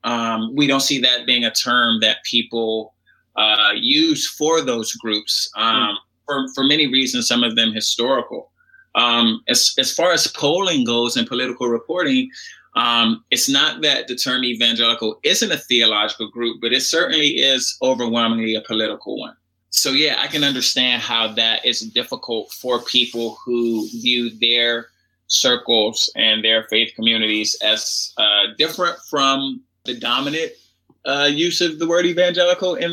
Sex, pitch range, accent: male, 115-150 Hz, American